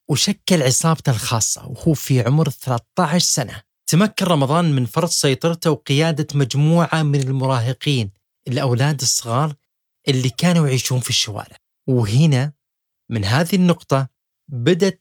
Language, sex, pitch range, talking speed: Arabic, male, 125-165 Hz, 115 wpm